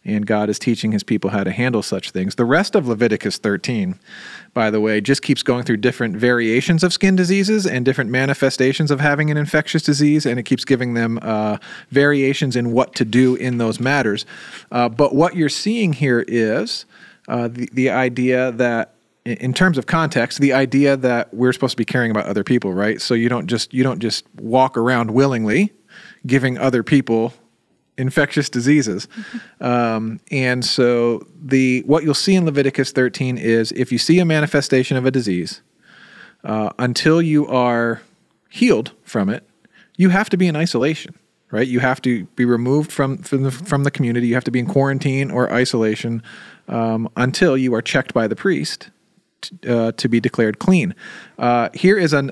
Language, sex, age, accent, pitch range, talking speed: English, male, 40-59, American, 120-155 Hz, 185 wpm